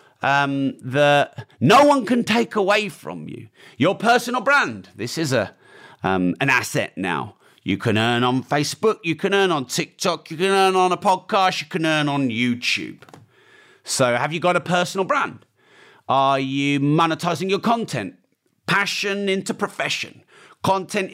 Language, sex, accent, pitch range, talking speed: English, male, British, 130-190 Hz, 160 wpm